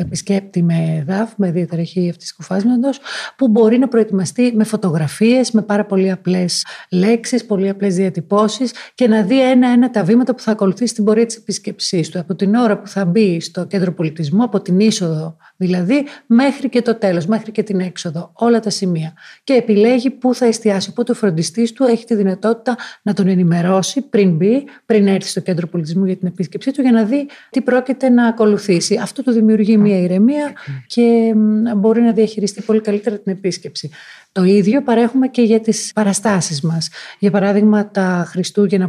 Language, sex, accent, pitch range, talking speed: Greek, female, native, 180-230 Hz, 180 wpm